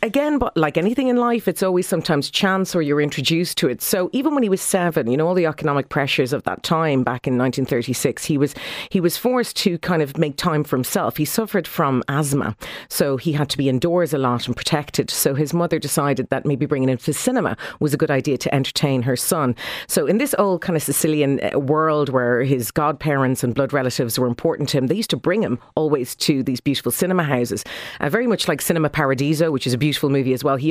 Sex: female